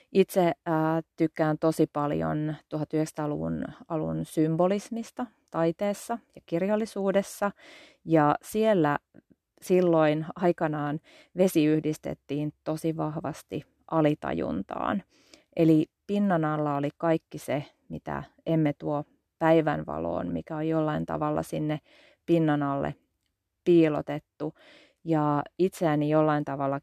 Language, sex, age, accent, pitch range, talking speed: Finnish, female, 30-49, native, 145-170 Hz, 90 wpm